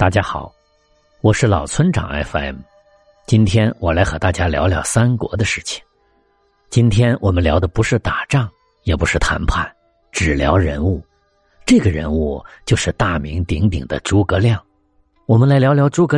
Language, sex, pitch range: Chinese, male, 80-120 Hz